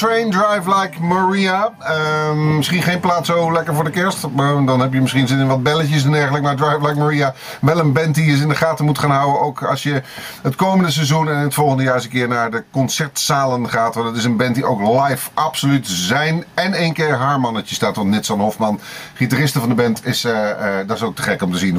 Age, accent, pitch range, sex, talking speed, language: 40-59, Dutch, 130-160 Hz, male, 250 wpm, Dutch